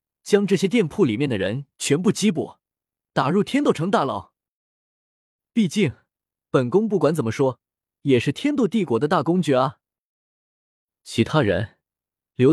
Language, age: Chinese, 20-39